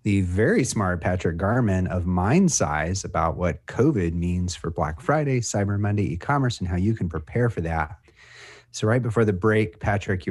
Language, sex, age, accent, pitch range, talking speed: English, male, 30-49, American, 90-115 Hz, 180 wpm